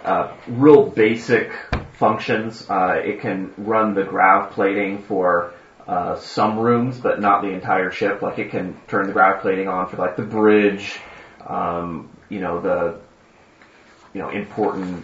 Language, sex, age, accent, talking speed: English, male, 30-49, American, 155 wpm